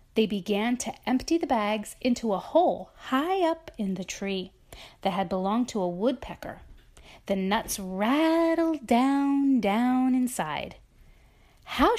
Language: English